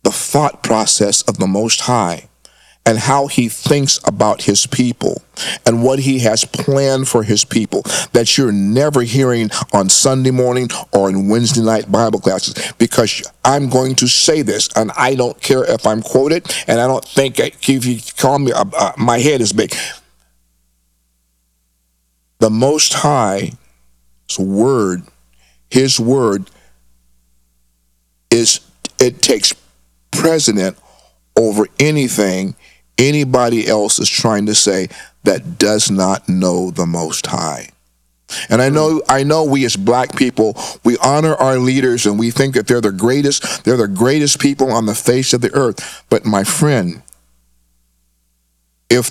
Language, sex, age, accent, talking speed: English, male, 50-69, American, 145 wpm